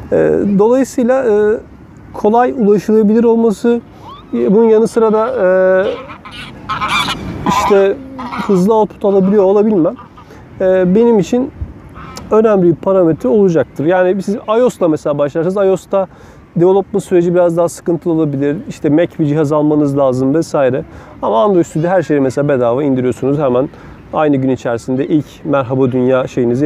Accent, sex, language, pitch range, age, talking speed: native, male, Turkish, 150-205 Hz, 40-59, 120 wpm